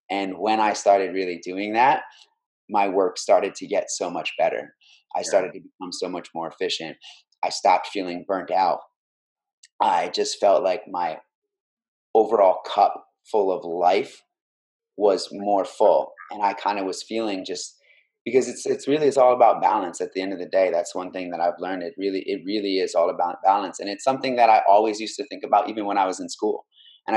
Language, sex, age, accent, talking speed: English, male, 30-49, American, 205 wpm